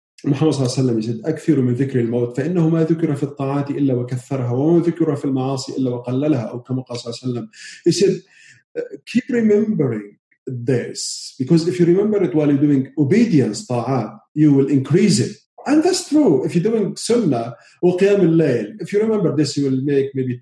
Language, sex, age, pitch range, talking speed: English, male, 40-59, 120-160 Hz, 105 wpm